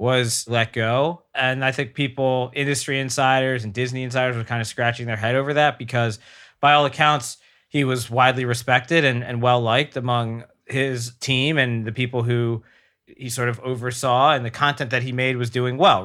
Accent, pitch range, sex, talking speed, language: American, 120-145 Hz, male, 190 wpm, English